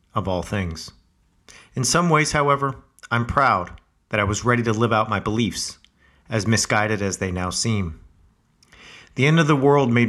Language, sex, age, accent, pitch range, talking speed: English, male, 40-59, American, 95-120 Hz, 180 wpm